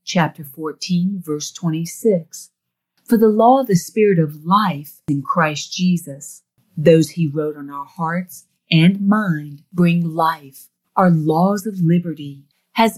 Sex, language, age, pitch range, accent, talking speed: female, English, 40-59, 150-195 Hz, American, 140 wpm